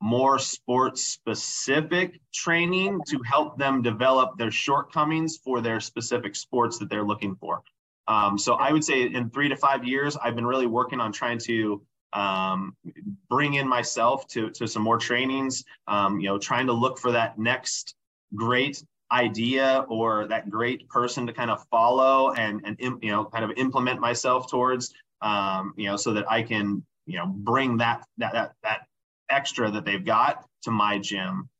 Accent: American